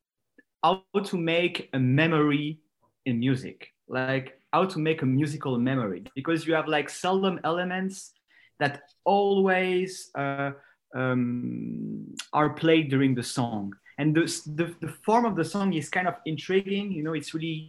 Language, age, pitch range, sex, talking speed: English, 30-49, 130-175 Hz, male, 145 wpm